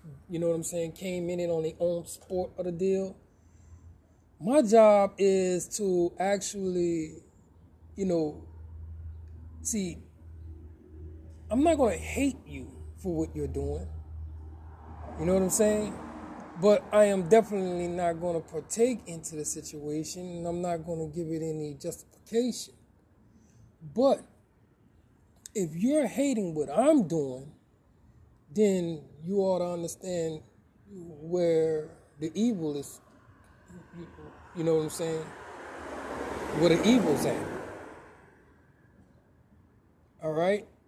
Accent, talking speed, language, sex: American, 120 wpm, English, male